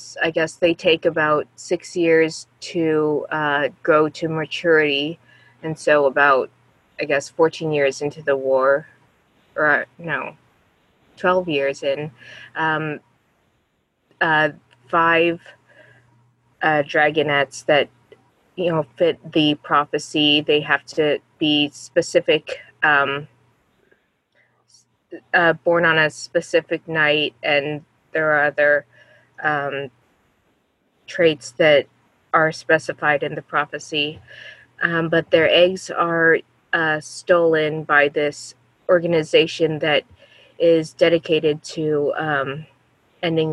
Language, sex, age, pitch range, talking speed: English, female, 20-39, 145-165 Hz, 110 wpm